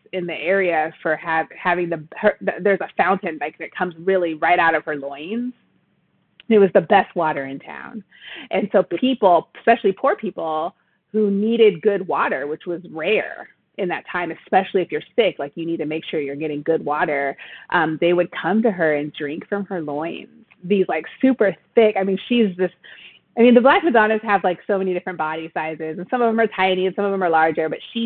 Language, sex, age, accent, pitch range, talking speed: English, female, 30-49, American, 165-200 Hz, 220 wpm